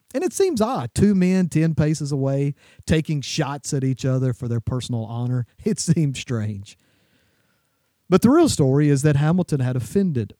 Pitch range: 125-165 Hz